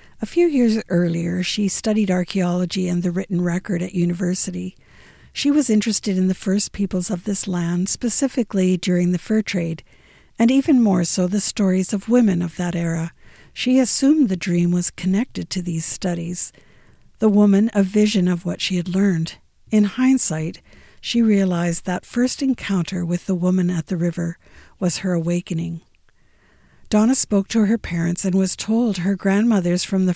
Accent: American